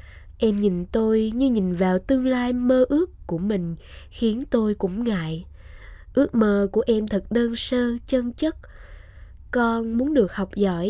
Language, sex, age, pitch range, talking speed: Vietnamese, female, 20-39, 180-240 Hz, 165 wpm